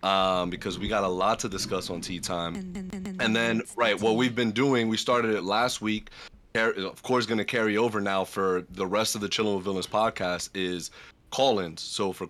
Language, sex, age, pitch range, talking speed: English, male, 30-49, 100-120 Hz, 210 wpm